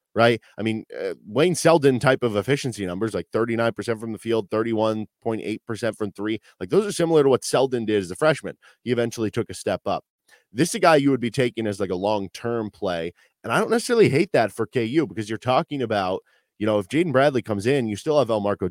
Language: English